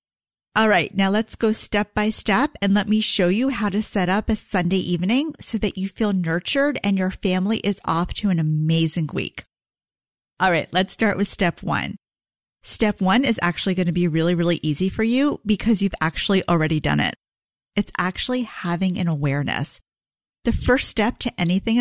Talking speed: 190 wpm